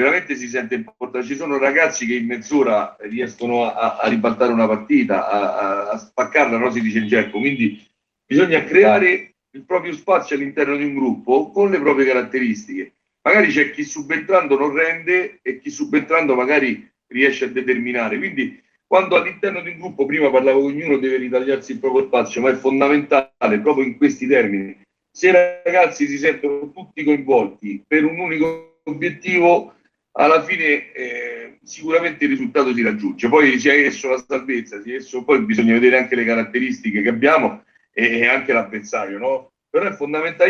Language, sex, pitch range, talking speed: Italian, male, 125-180 Hz, 175 wpm